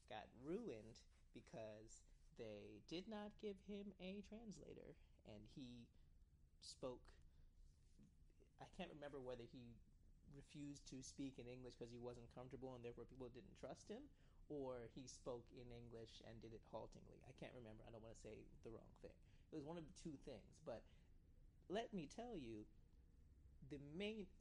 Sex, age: male, 30-49